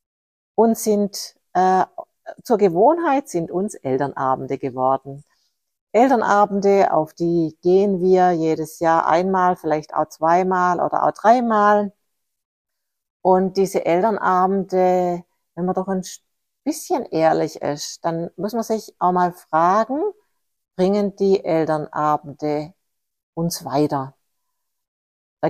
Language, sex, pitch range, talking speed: German, female, 150-205 Hz, 110 wpm